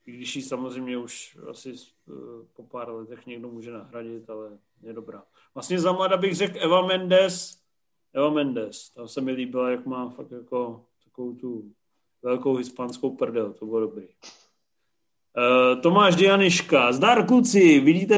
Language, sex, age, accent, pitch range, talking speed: Czech, male, 40-59, native, 130-165 Hz, 140 wpm